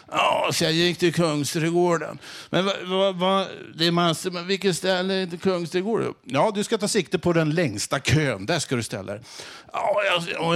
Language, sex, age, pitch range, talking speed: Swedish, male, 50-69, 110-165 Hz, 175 wpm